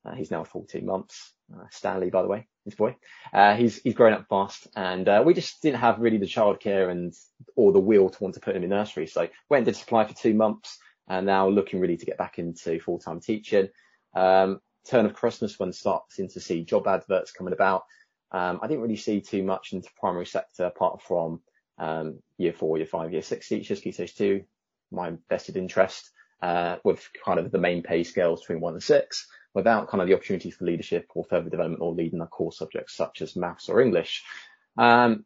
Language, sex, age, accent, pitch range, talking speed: English, male, 20-39, British, 90-120 Hz, 215 wpm